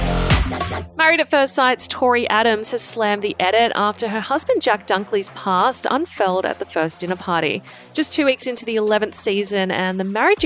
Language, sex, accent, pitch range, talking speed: English, female, Australian, 190-270 Hz, 185 wpm